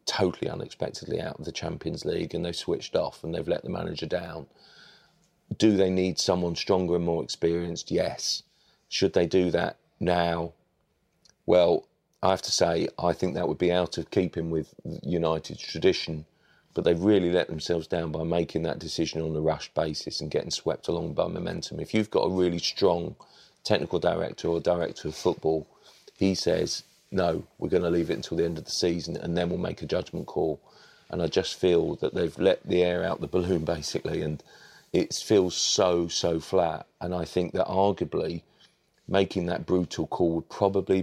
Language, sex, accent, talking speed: English, male, British, 190 wpm